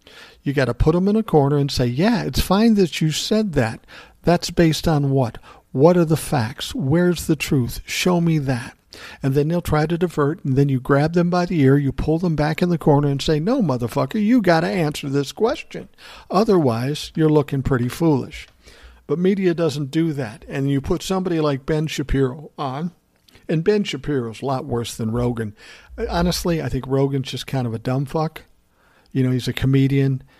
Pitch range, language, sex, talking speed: 125-160 Hz, English, male, 205 wpm